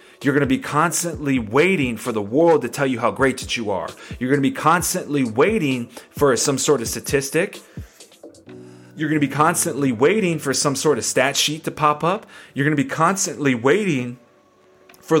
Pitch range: 120-145 Hz